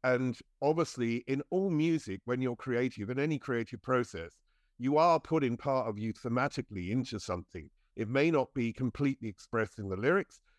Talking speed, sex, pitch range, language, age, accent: 165 wpm, male, 115-145 Hz, English, 50-69, British